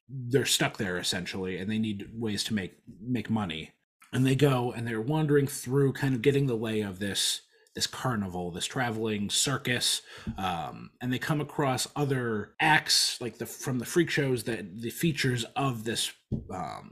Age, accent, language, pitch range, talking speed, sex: 30-49, American, English, 105-135 Hz, 175 wpm, male